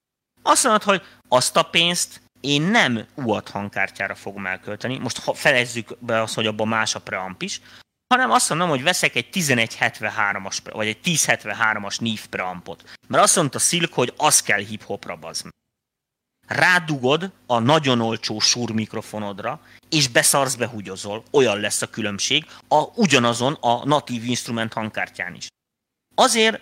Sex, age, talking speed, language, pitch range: male, 30-49, 145 wpm, Hungarian, 110-155 Hz